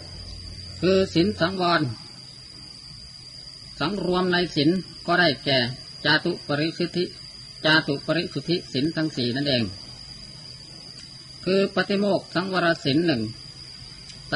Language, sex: Thai, female